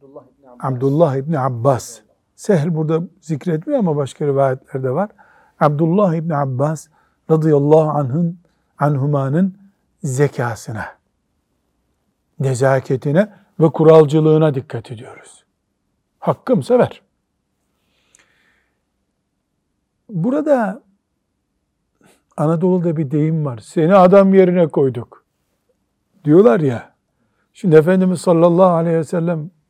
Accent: native